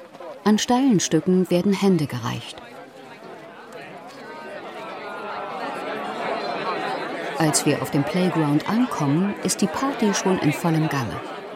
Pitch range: 150-185 Hz